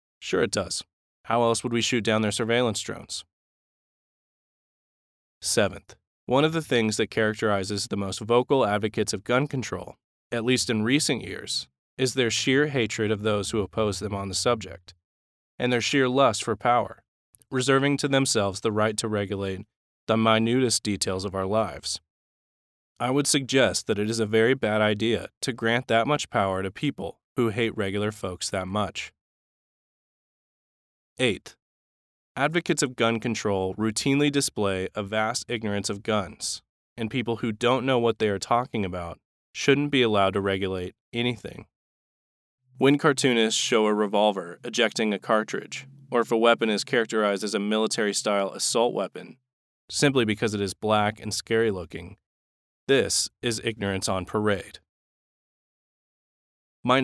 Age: 20-39